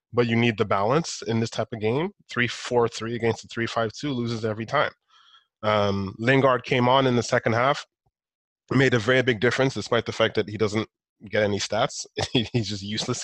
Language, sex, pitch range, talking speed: English, male, 110-130 Hz, 200 wpm